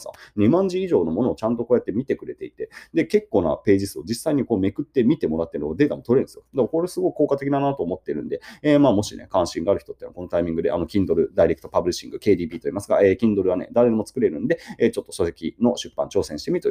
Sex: male